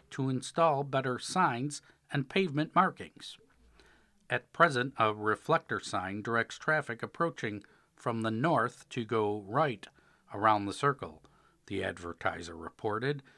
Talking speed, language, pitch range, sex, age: 120 wpm, English, 115-170 Hz, male, 50-69